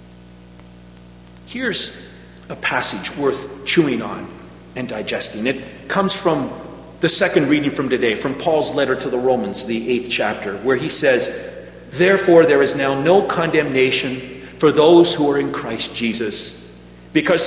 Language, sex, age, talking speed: English, male, 50-69, 145 wpm